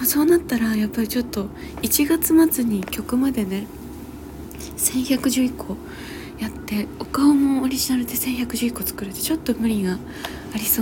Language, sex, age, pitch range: Japanese, female, 20-39, 205-260 Hz